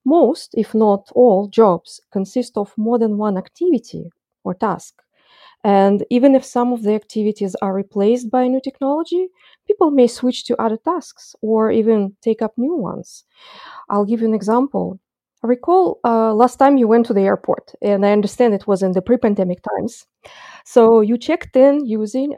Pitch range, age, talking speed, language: 195-250 Hz, 20-39, 180 wpm, English